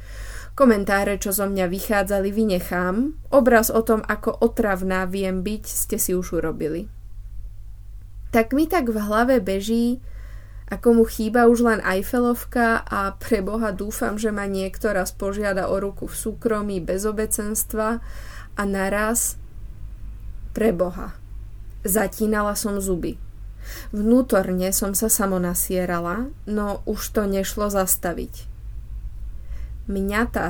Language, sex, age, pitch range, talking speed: Czech, female, 20-39, 170-225 Hz, 115 wpm